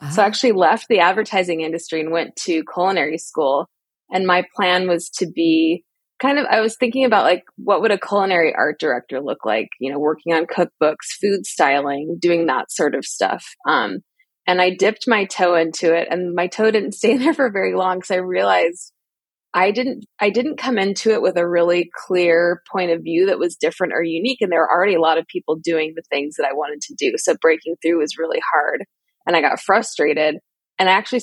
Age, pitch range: 20-39, 165-200 Hz